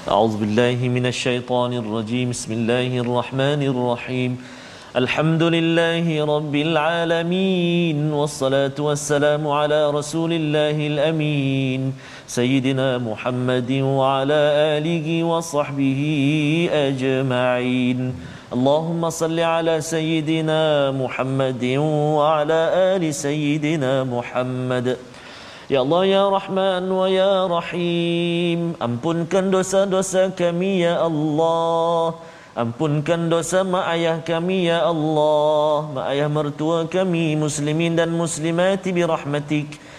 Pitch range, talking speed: 135-175 Hz, 95 wpm